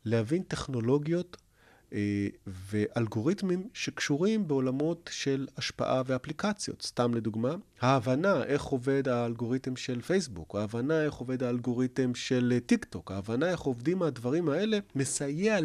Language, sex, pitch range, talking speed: Hebrew, male, 110-165 Hz, 115 wpm